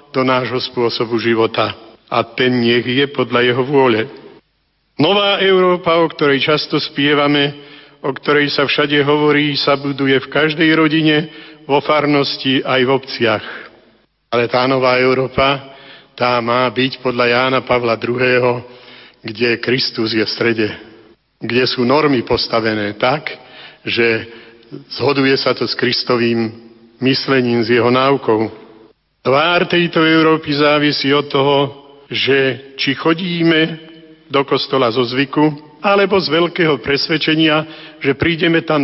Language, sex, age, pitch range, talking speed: Slovak, male, 50-69, 125-155 Hz, 130 wpm